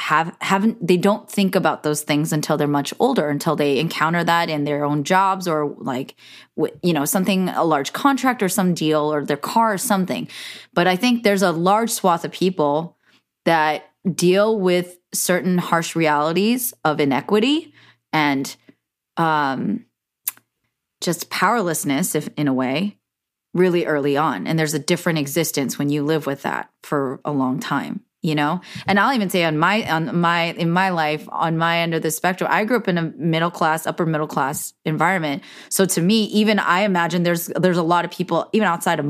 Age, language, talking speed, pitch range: 20-39, English, 190 wpm, 155-195 Hz